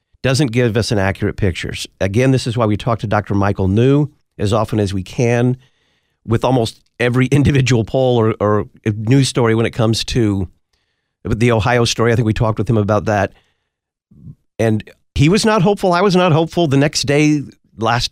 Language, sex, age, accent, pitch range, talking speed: English, male, 50-69, American, 105-130 Hz, 190 wpm